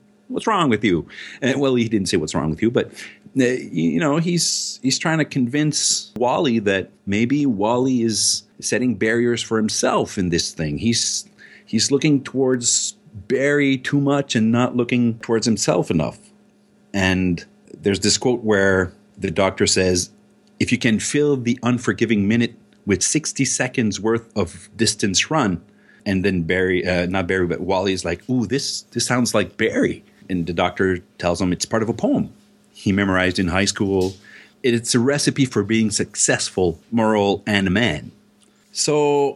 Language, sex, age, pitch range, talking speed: English, male, 40-59, 95-130 Hz, 170 wpm